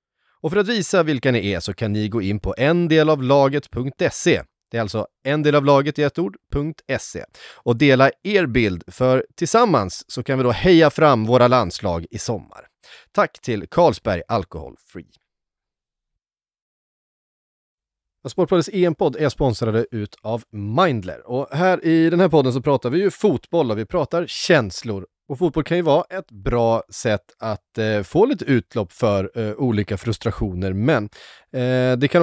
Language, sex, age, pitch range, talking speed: Swedish, male, 30-49, 110-155 Hz, 155 wpm